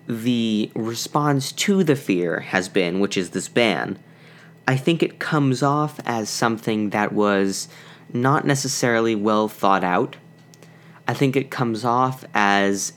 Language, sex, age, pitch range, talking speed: English, male, 20-39, 105-155 Hz, 145 wpm